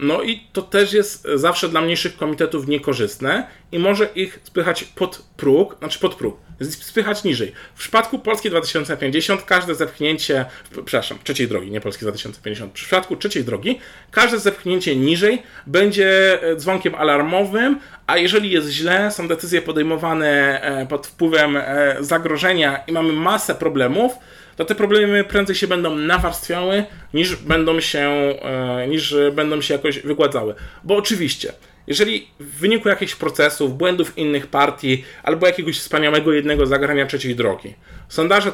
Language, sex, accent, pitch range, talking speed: Polish, male, native, 145-190 Hz, 135 wpm